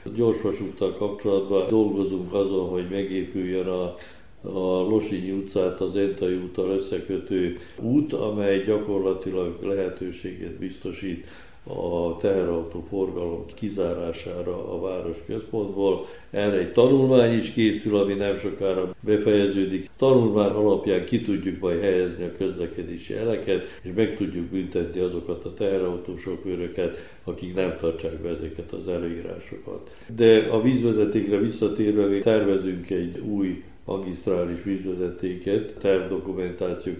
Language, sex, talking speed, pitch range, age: Hungarian, male, 115 wpm, 90-105 Hz, 60-79